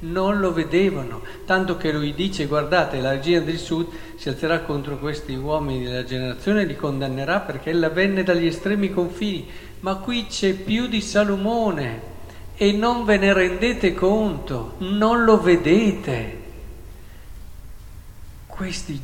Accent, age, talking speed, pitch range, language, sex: native, 50-69, 140 wpm, 120-170 Hz, Italian, male